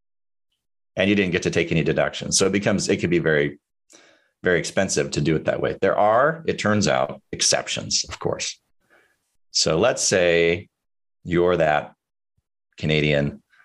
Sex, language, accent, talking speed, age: male, English, American, 160 wpm, 40-59